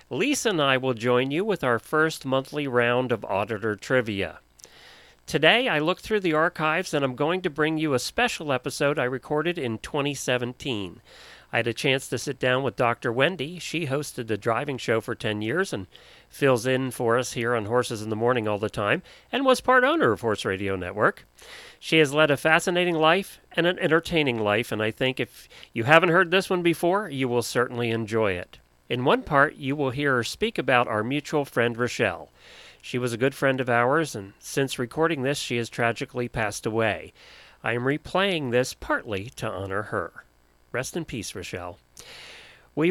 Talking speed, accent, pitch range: 195 wpm, American, 120-170 Hz